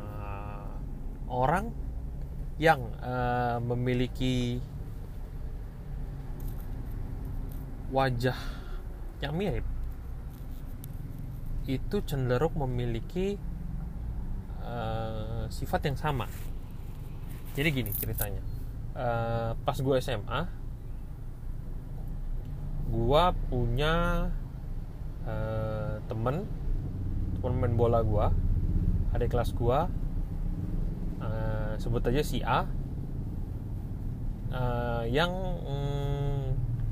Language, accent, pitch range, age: Indonesian, native, 110-135 Hz, 20-39